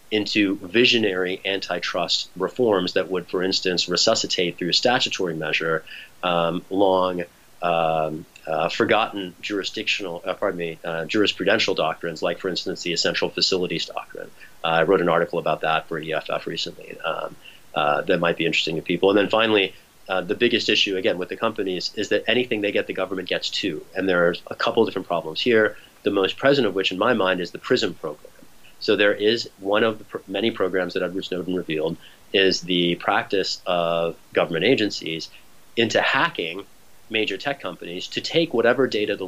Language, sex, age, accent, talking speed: English, male, 30-49, American, 180 wpm